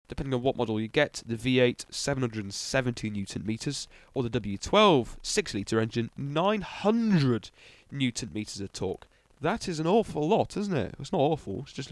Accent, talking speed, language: British, 160 wpm, English